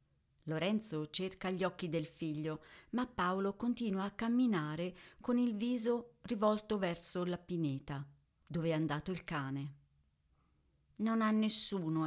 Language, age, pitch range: Italian, 40-59, 150-190 Hz